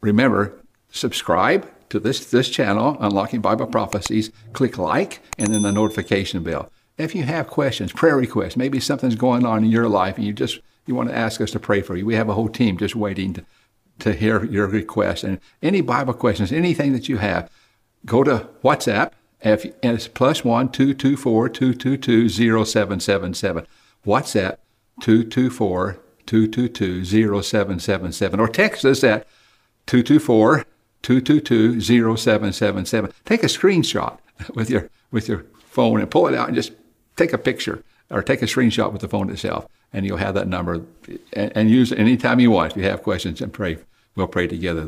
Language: English